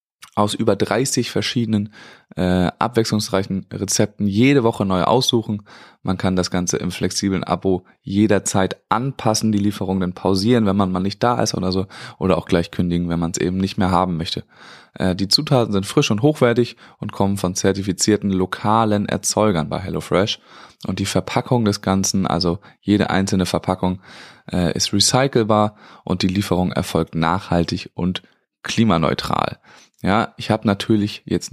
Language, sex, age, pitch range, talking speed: German, male, 20-39, 95-115 Hz, 155 wpm